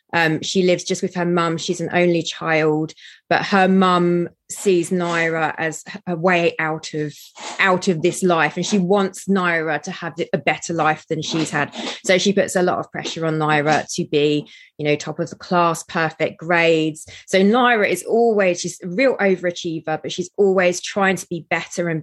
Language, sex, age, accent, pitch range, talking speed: English, female, 20-39, British, 160-190 Hz, 195 wpm